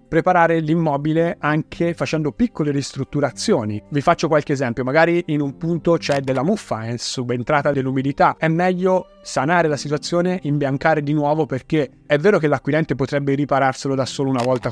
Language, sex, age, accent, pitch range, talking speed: Italian, male, 30-49, native, 130-160 Hz, 160 wpm